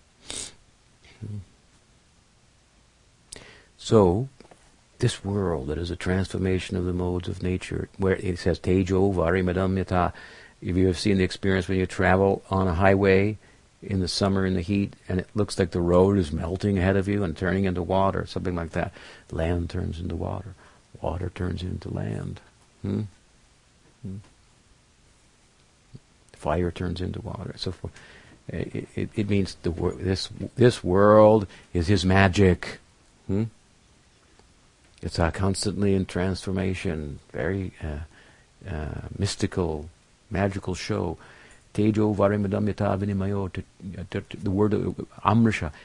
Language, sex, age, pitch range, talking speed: English, male, 50-69, 90-105 Hz, 125 wpm